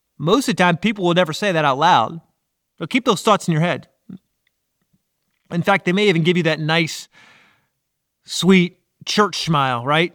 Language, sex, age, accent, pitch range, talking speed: English, male, 30-49, American, 145-180 Hz, 185 wpm